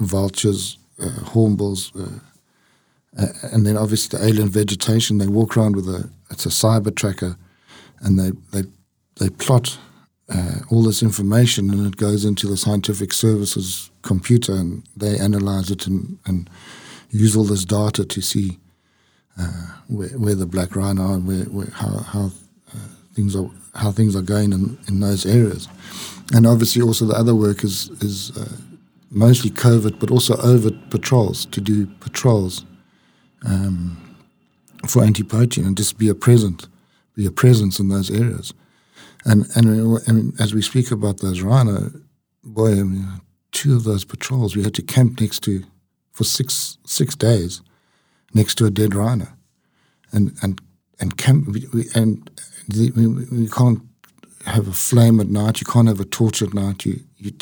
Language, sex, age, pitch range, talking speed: Dutch, male, 50-69, 95-115 Hz, 165 wpm